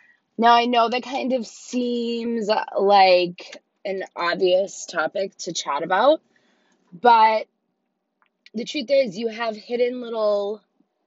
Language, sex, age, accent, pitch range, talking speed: English, female, 20-39, American, 170-235 Hz, 120 wpm